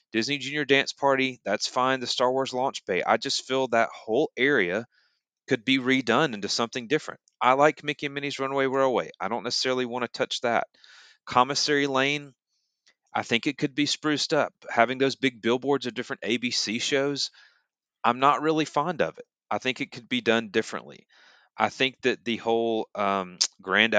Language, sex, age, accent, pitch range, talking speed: English, male, 30-49, American, 105-135 Hz, 185 wpm